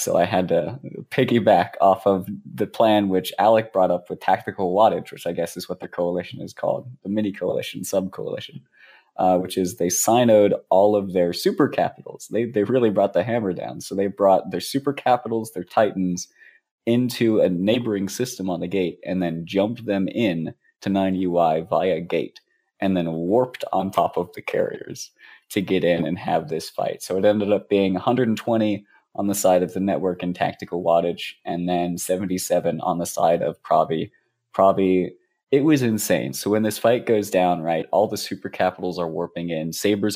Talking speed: 190 wpm